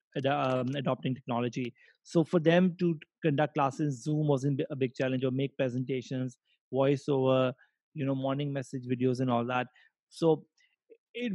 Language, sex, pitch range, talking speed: English, male, 135-170 Hz, 145 wpm